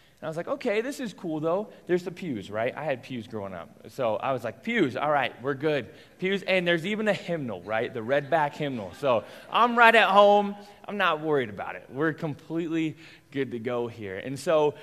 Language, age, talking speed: English, 20-39, 225 wpm